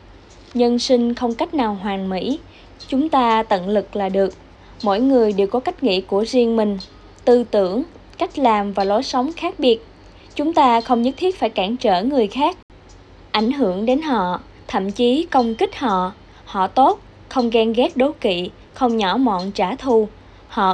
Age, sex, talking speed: 20-39, female, 180 wpm